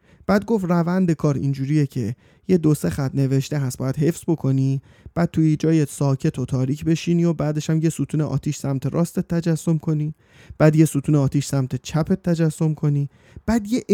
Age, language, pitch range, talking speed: 30-49, Persian, 135-180 Hz, 180 wpm